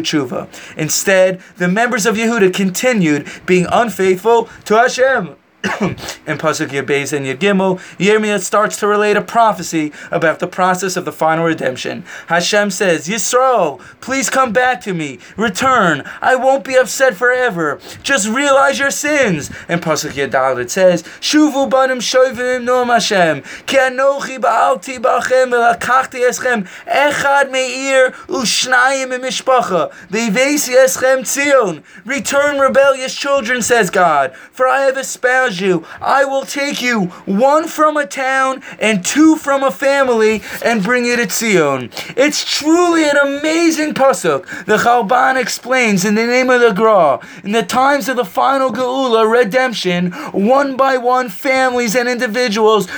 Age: 20-39